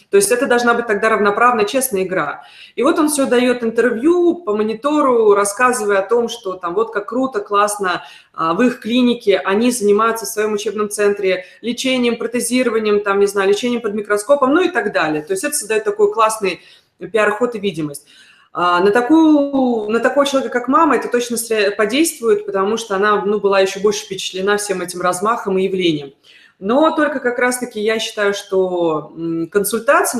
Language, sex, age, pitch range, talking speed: Russian, female, 20-39, 190-230 Hz, 175 wpm